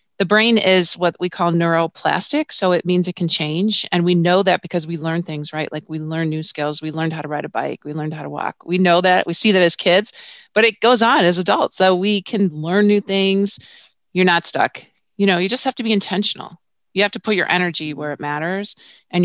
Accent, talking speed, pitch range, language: American, 250 wpm, 160-195 Hz, English